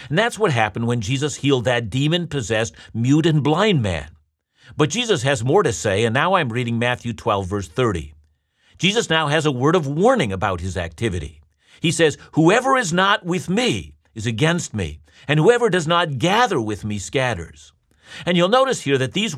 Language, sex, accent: English, male, American